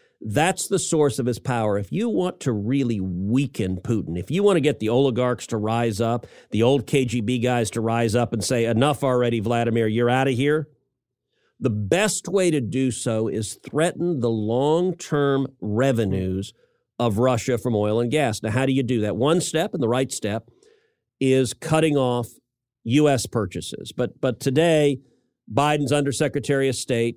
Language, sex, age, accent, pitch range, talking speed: English, male, 50-69, American, 115-155 Hz, 175 wpm